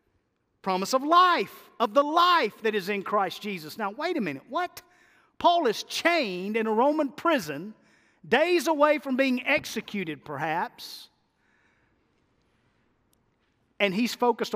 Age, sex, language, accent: 50-69, male, English, American